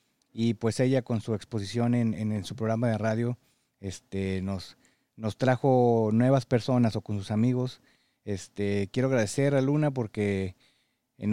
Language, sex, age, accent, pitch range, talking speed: Spanish, male, 30-49, Mexican, 110-135 Hz, 160 wpm